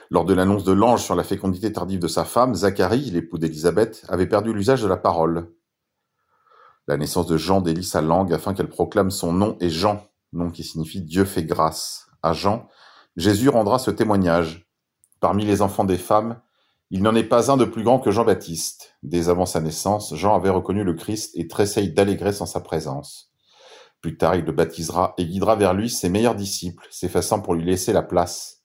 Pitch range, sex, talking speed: 85-105 Hz, male, 200 wpm